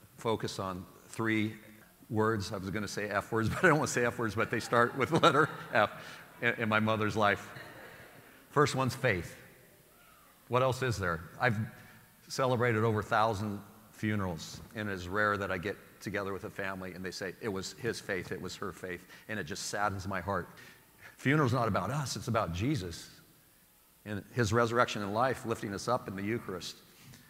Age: 40-59